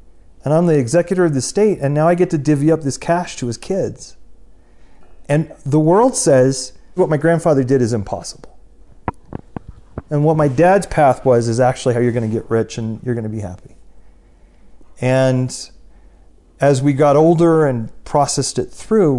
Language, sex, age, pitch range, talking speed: English, male, 40-59, 110-150 Hz, 180 wpm